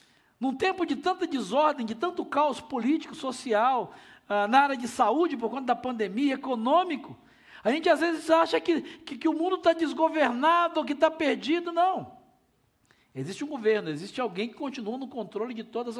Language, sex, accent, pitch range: Portuguese, male, Brazilian, 235-310 Hz